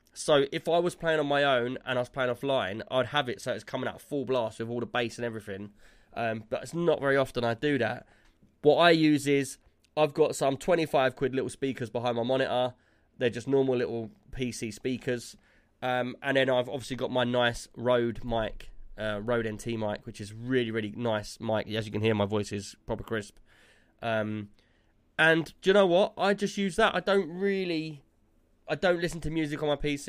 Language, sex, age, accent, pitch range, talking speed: English, male, 20-39, British, 110-140 Hz, 215 wpm